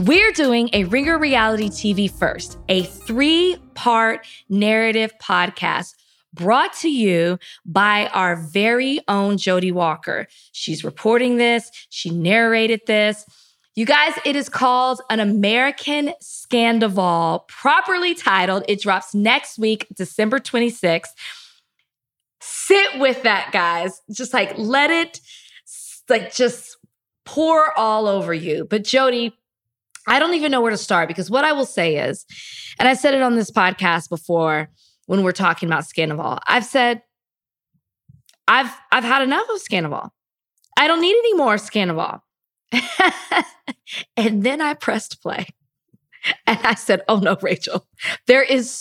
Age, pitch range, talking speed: 20-39, 190-260 Hz, 135 wpm